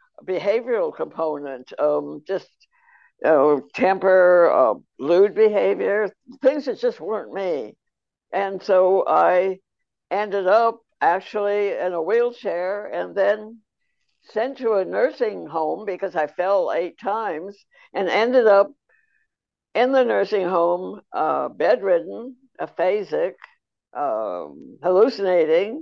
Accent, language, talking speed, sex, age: American, English, 110 wpm, female, 60-79